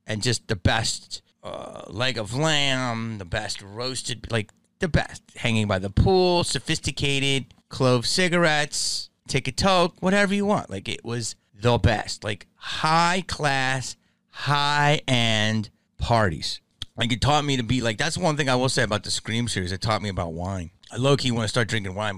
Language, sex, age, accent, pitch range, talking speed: English, male, 30-49, American, 95-135 Hz, 175 wpm